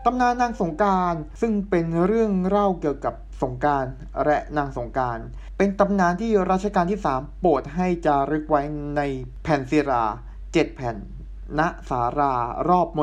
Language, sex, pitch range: Thai, male, 140-190 Hz